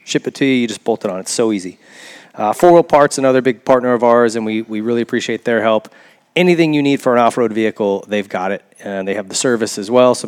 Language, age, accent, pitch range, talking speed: English, 30-49, American, 105-125 Hz, 270 wpm